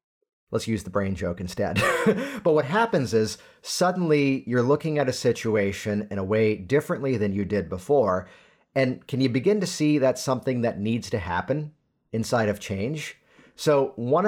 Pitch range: 100-130 Hz